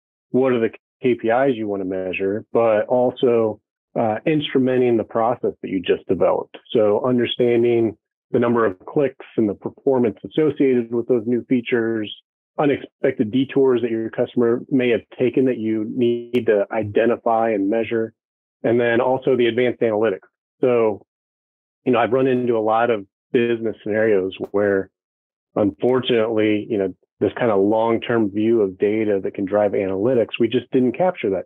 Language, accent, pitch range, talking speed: English, American, 100-125 Hz, 160 wpm